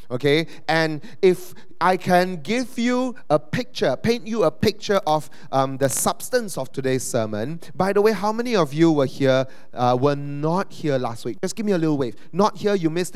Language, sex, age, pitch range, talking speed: English, male, 30-49, 145-190 Hz, 205 wpm